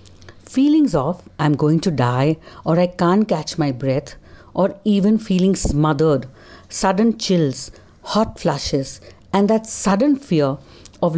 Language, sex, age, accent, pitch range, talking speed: English, female, 60-79, Indian, 140-200 Hz, 135 wpm